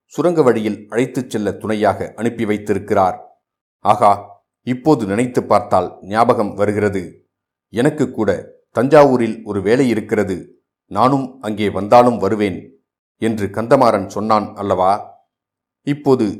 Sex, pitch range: male, 105-125 Hz